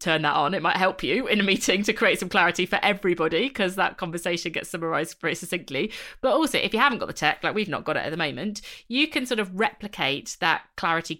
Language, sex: English, female